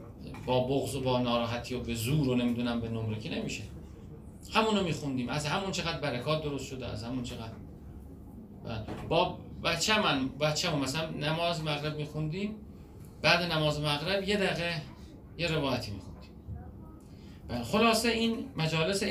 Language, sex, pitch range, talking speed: Persian, male, 120-160 Hz, 140 wpm